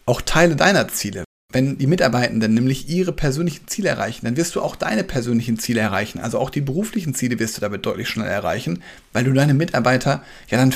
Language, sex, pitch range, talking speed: German, male, 125-160 Hz, 205 wpm